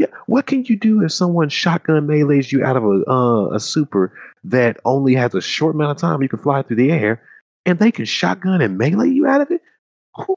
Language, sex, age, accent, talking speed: English, male, 40-59, American, 225 wpm